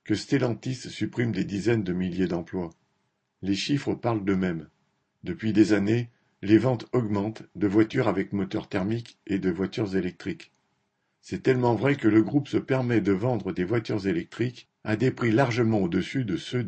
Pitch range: 100-120 Hz